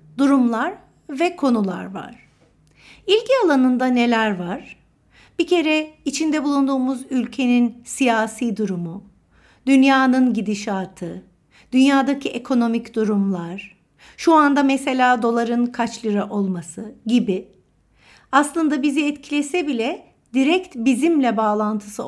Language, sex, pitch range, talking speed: Turkish, female, 210-280 Hz, 95 wpm